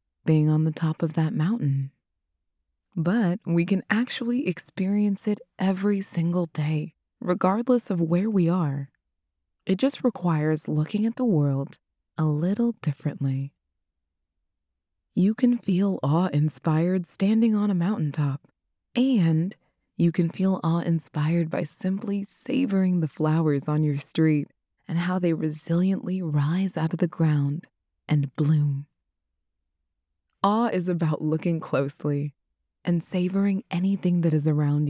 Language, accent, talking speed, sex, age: English, American, 125 wpm, female, 20-39